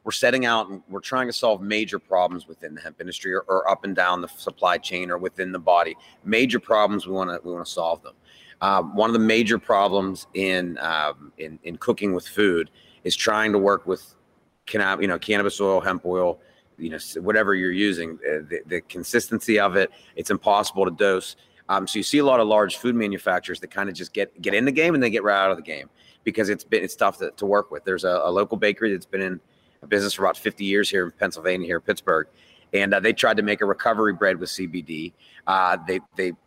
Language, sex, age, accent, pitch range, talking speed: English, male, 30-49, American, 90-105 Hz, 240 wpm